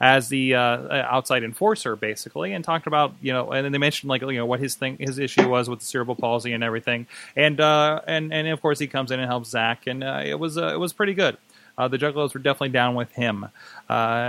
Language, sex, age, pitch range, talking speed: English, male, 20-39, 120-150 Hz, 250 wpm